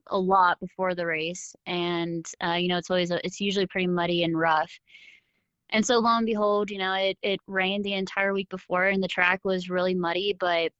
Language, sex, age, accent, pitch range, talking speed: English, female, 20-39, American, 180-200 Hz, 215 wpm